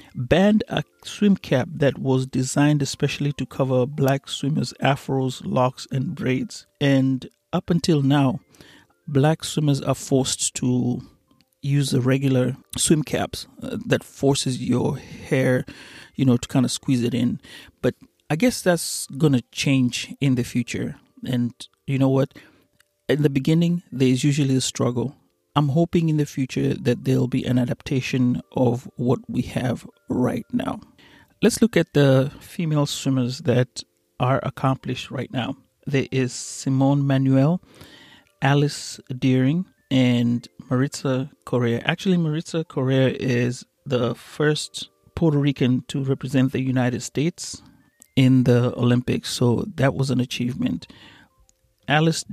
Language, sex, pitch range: Swahili, male, 125-145 Hz